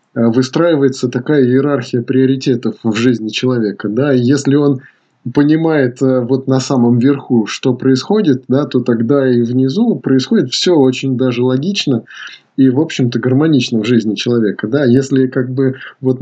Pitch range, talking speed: 120-140 Hz, 145 wpm